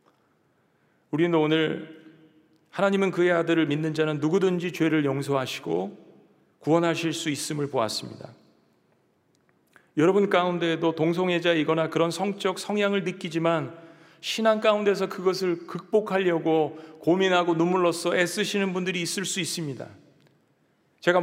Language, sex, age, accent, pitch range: Korean, male, 40-59, native, 160-190 Hz